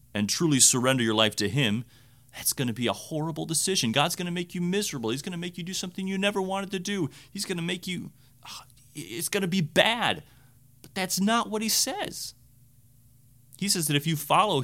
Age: 30-49